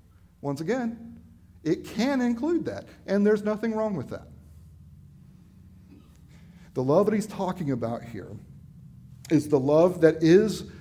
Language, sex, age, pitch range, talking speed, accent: English, male, 50-69, 115-150 Hz, 135 wpm, American